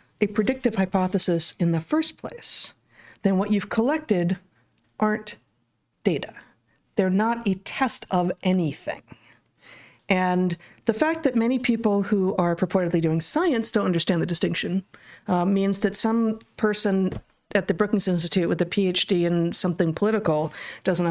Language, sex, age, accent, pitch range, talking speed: English, female, 50-69, American, 175-225 Hz, 140 wpm